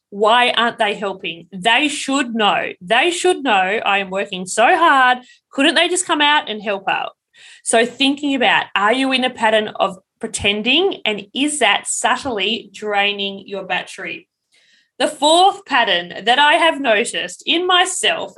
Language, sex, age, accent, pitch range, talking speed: English, female, 20-39, Australian, 205-280 Hz, 160 wpm